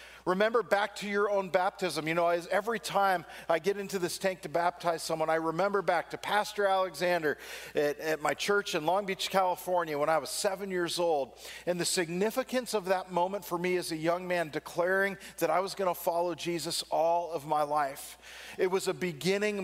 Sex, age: male, 40-59